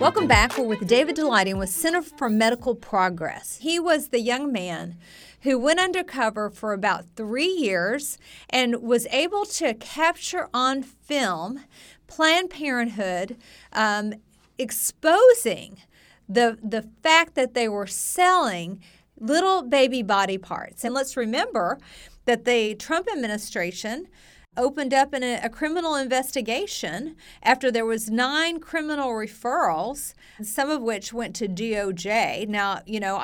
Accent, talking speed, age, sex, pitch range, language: American, 135 wpm, 40-59, female, 210-285 Hz, English